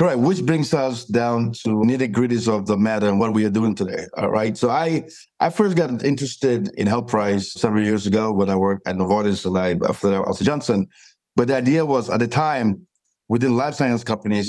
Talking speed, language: 220 wpm, English